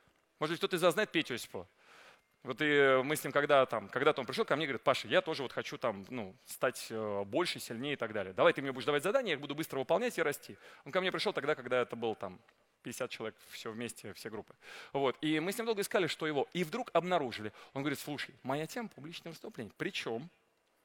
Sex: male